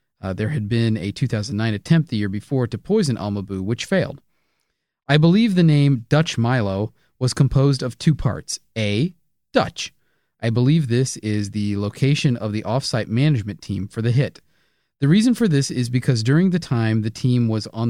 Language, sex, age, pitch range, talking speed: English, male, 30-49, 110-150 Hz, 185 wpm